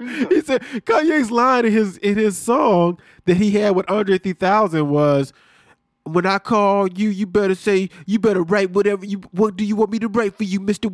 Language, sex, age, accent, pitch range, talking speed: English, male, 20-39, American, 145-215 Hz, 210 wpm